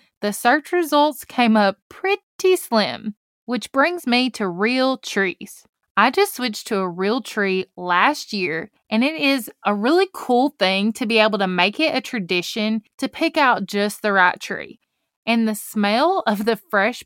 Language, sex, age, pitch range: English, female, 20-39, 200-270 Hz